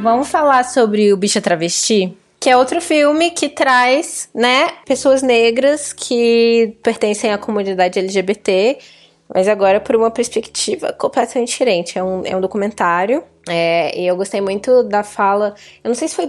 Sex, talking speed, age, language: female, 160 wpm, 20-39, Portuguese